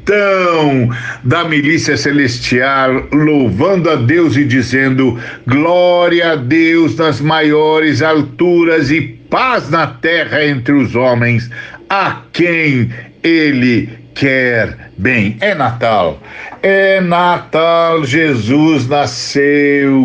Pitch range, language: 125-155 Hz, Portuguese